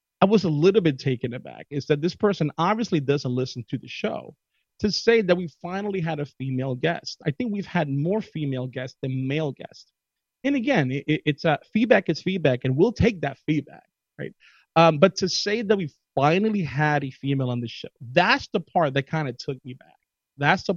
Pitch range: 145-210 Hz